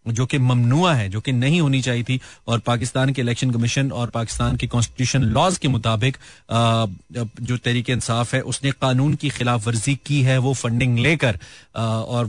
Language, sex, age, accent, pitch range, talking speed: Hindi, male, 30-49, native, 120-150 Hz, 180 wpm